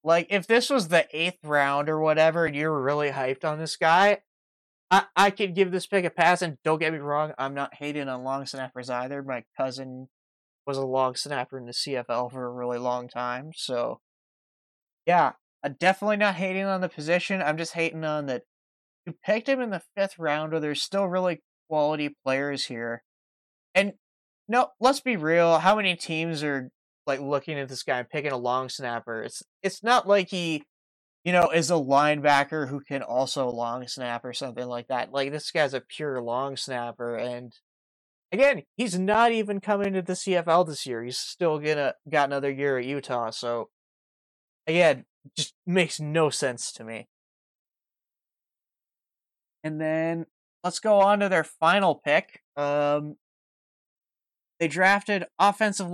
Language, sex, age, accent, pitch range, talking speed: English, male, 20-39, American, 130-185 Hz, 175 wpm